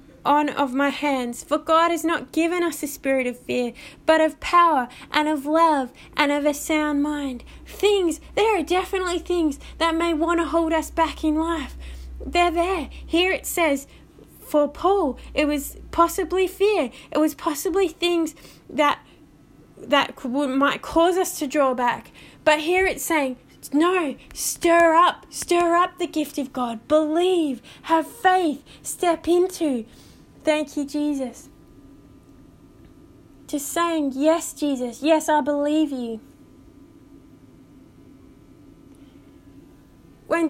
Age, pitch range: 10-29, 280-340 Hz